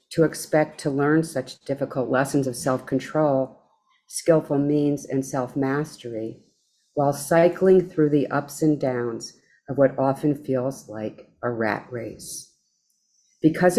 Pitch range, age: 125-150 Hz, 50-69